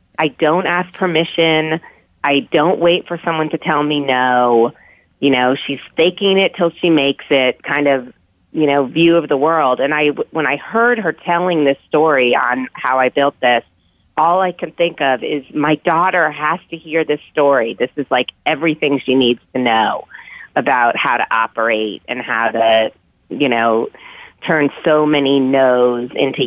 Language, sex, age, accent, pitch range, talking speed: English, female, 30-49, American, 125-155 Hz, 175 wpm